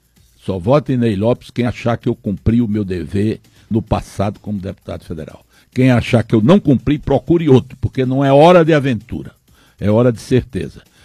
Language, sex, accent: Portuguese, male, Brazilian